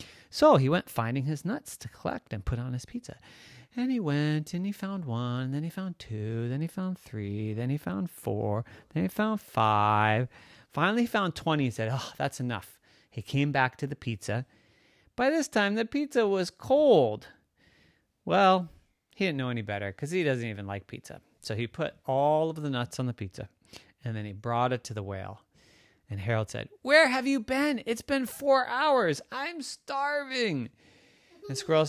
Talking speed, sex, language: 195 wpm, male, English